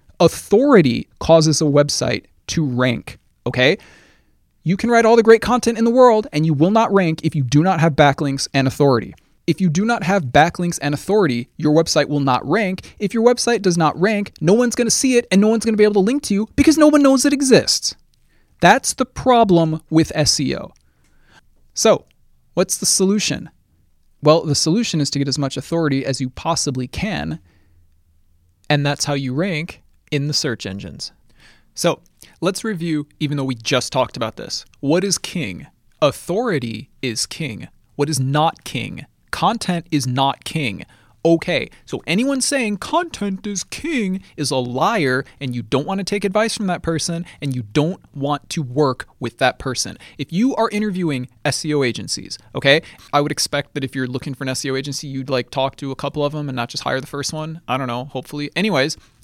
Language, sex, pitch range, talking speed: English, male, 130-195 Hz, 195 wpm